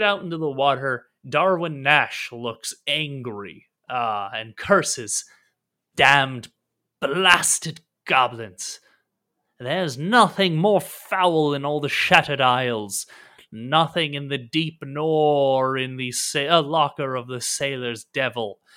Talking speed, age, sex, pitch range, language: 120 wpm, 30-49, male, 125-155 Hz, English